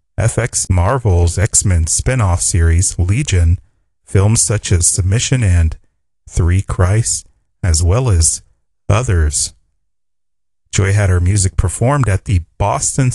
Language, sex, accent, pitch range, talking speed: English, male, American, 85-105 Hz, 115 wpm